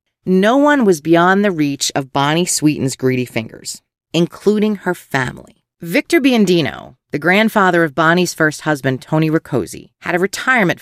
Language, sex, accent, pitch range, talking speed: English, female, American, 150-210 Hz, 150 wpm